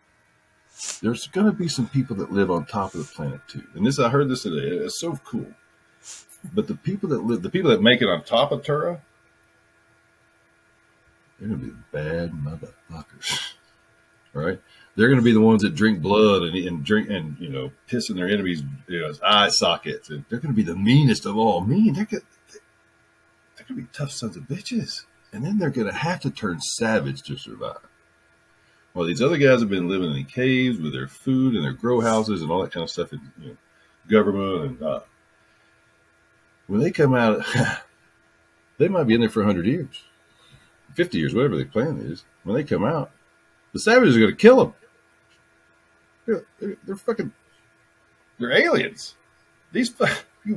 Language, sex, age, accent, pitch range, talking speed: English, male, 40-59, American, 85-130 Hz, 195 wpm